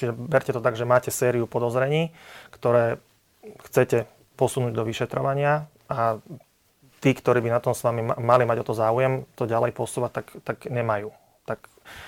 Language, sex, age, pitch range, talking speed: Slovak, male, 30-49, 115-125 Hz, 165 wpm